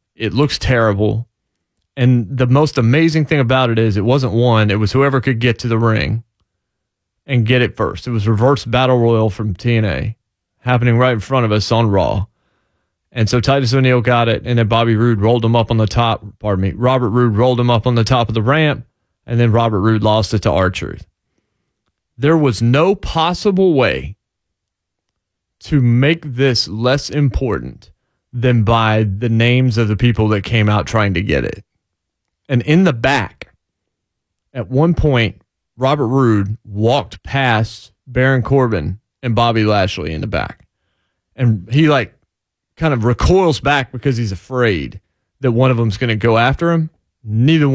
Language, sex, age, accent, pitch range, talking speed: English, male, 30-49, American, 105-130 Hz, 175 wpm